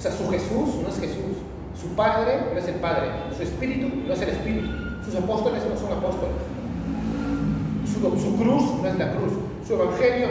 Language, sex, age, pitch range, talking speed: Spanish, male, 30-49, 170-225 Hz, 190 wpm